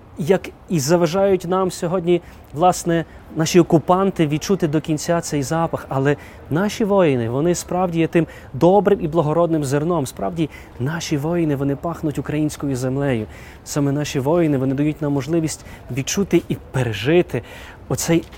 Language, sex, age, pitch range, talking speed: Ukrainian, male, 20-39, 145-185 Hz, 135 wpm